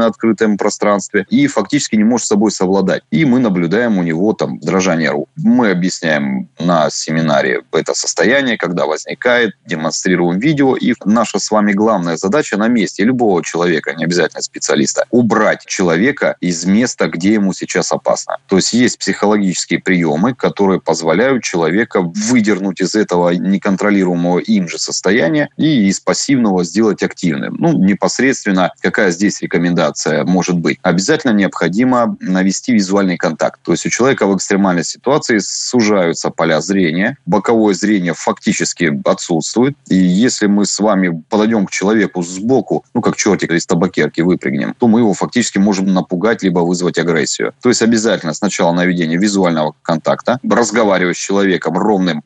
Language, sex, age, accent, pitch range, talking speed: Russian, male, 30-49, native, 90-110 Hz, 145 wpm